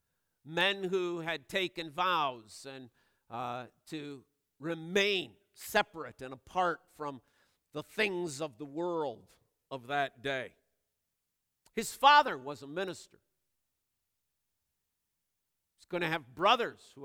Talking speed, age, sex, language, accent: 115 wpm, 50-69, male, English, American